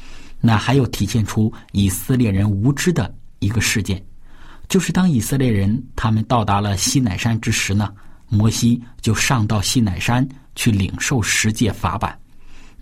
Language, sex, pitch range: Chinese, male, 100-130 Hz